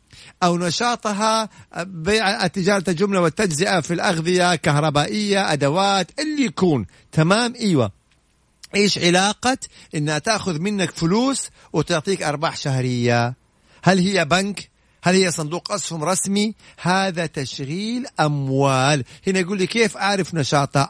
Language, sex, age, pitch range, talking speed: English, male, 50-69, 155-200 Hz, 110 wpm